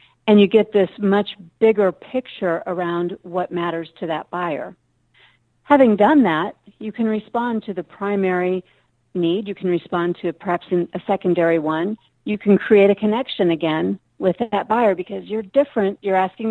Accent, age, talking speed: American, 50-69, 165 wpm